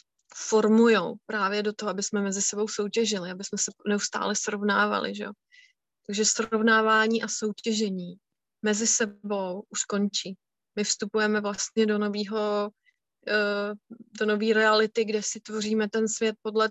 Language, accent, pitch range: Czech, native, 210-225 Hz